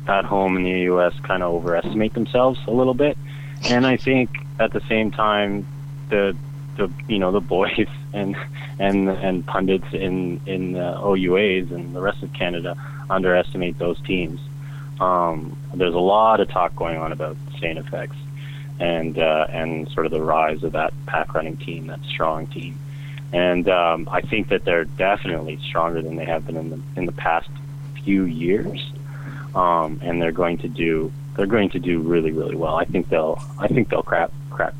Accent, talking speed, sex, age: American, 185 wpm, male, 30-49